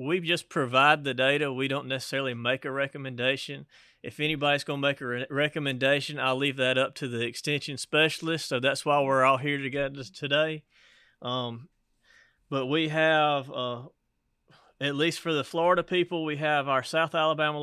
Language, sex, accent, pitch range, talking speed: English, male, American, 130-155 Hz, 165 wpm